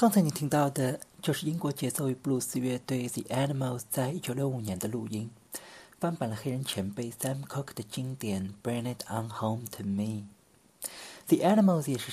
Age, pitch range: 40-59, 110-145 Hz